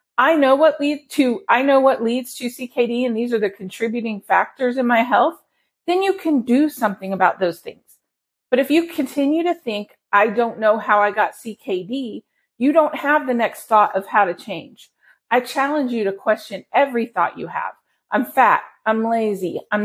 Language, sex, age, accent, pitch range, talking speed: English, female, 40-59, American, 215-280 Hz, 185 wpm